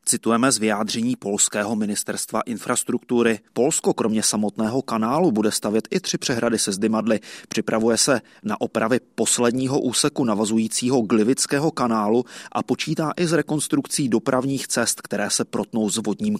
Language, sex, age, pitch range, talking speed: Czech, male, 30-49, 115-140 Hz, 140 wpm